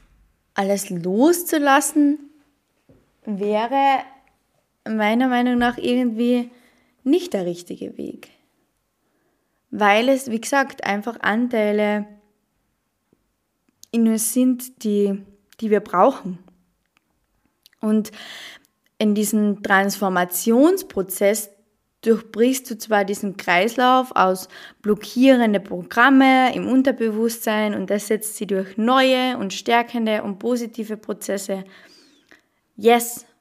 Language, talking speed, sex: German, 90 wpm, female